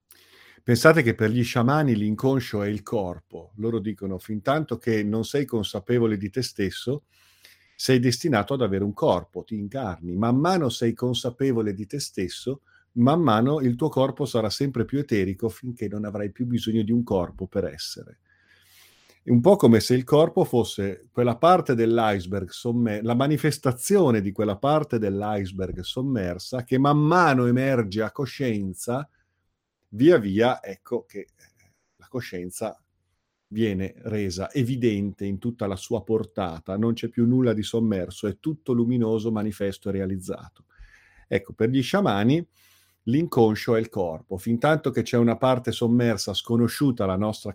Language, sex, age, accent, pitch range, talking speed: Italian, male, 40-59, native, 105-130 Hz, 155 wpm